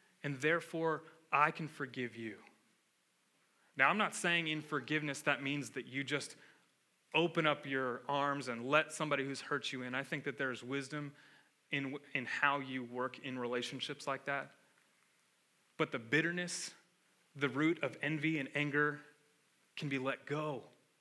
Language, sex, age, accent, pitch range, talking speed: English, male, 30-49, American, 145-195 Hz, 155 wpm